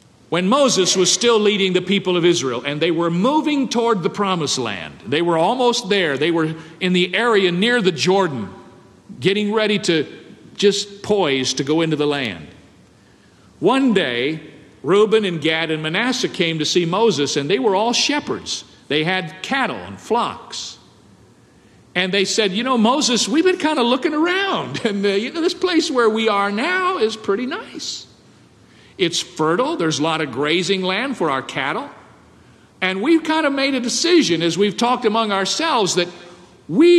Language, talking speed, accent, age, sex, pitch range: English, 180 wpm, American, 50-69, male, 165-250 Hz